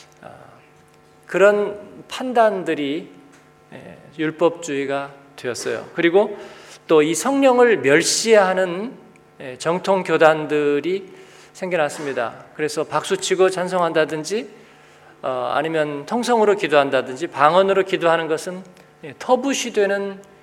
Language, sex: Korean, male